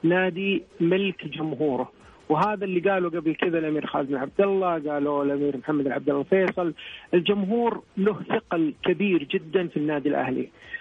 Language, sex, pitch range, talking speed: Arabic, male, 150-195 Hz, 150 wpm